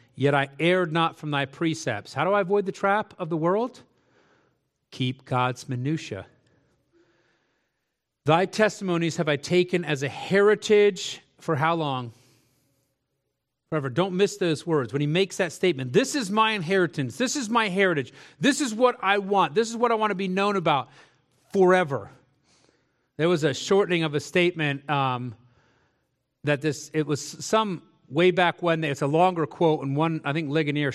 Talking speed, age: 170 wpm, 40-59